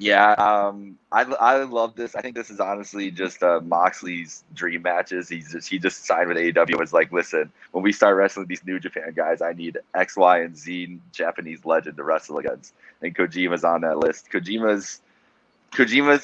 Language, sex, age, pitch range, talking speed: English, male, 20-39, 85-95 Hz, 195 wpm